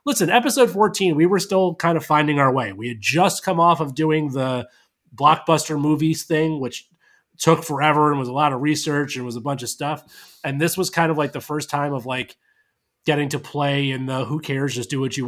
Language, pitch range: English, 135-165 Hz